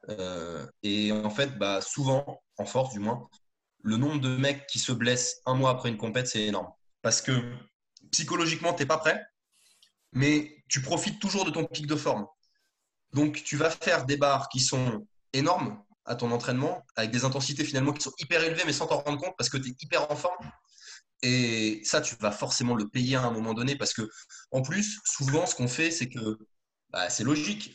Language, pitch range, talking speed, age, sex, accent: French, 125-160 Hz, 210 wpm, 20-39, male, French